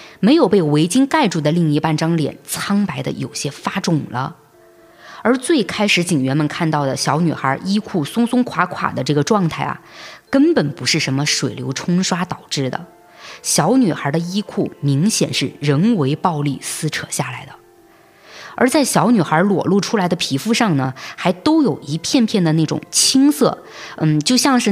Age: 20-39